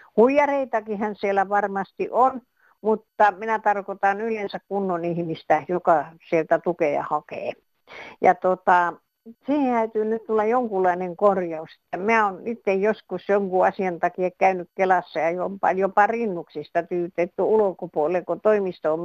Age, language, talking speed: 50-69, Finnish, 125 wpm